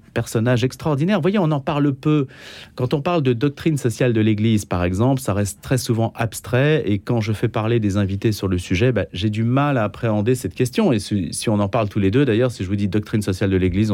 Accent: French